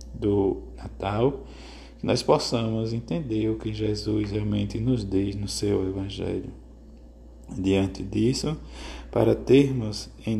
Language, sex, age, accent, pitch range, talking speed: Portuguese, male, 20-39, Brazilian, 100-120 Hz, 115 wpm